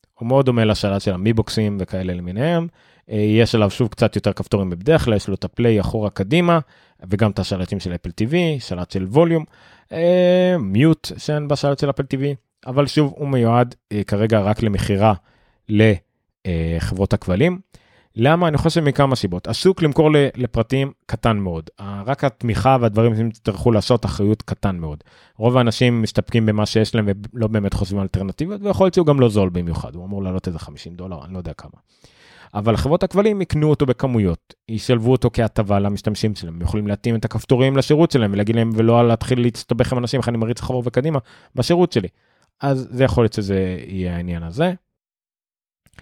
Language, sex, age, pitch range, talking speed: Hebrew, male, 30-49, 95-130 Hz, 145 wpm